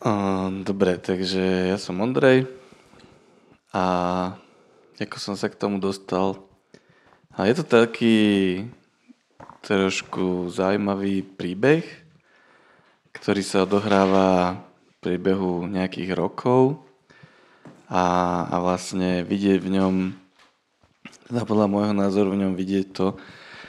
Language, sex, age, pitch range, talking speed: Slovak, male, 20-39, 90-100 Hz, 100 wpm